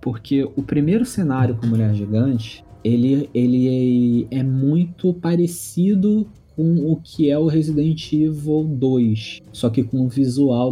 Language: Portuguese